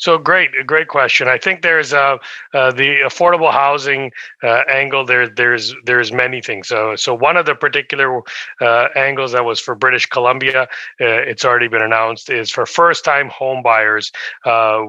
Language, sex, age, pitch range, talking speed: English, male, 30-49, 110-130 Hz, 180 wpm